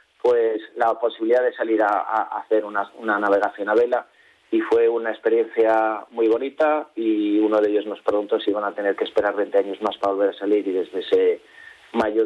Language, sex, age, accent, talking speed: Spanish, male, 30-49, Spanish, 205 wpm